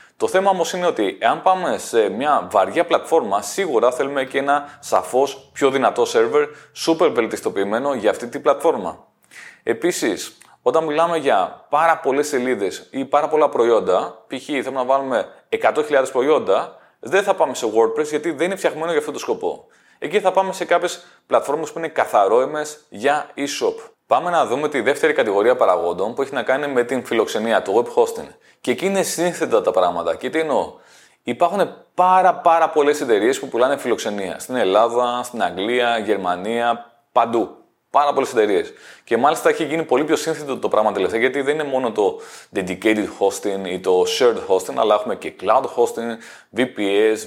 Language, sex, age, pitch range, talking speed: Greek, male, 30-49, 130-195 Hz, 175 wpm